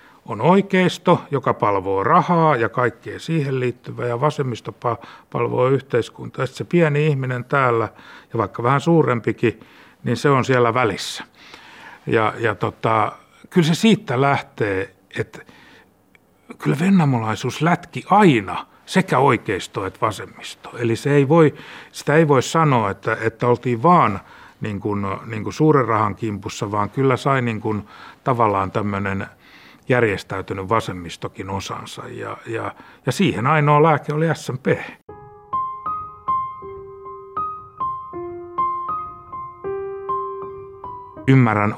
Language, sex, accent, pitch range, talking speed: Finnish, male, native, 110-175 Hz, 115 wpm